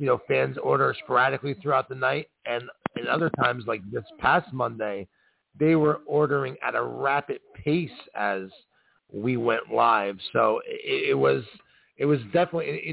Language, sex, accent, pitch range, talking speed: English, male, American, 120-155 Hz, 160 wpm